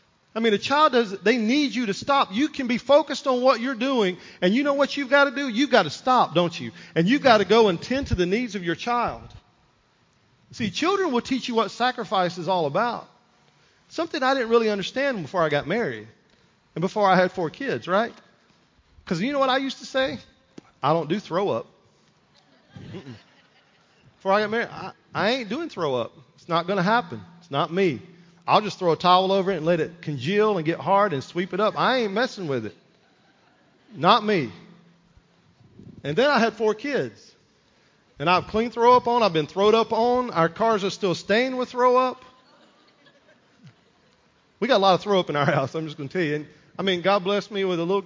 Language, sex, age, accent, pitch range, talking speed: English, male, 40-59, American, 170-240 Hz, 220 wpm